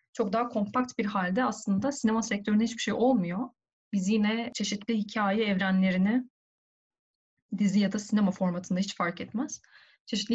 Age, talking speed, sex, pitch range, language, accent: 30-49, 145 wpm, female, 190-245 Hz, Turkish, native